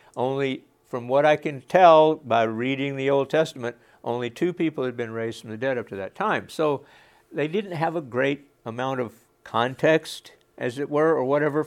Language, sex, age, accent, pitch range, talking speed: English, male, 60-79, American, 130-180 Hz, 195 wpm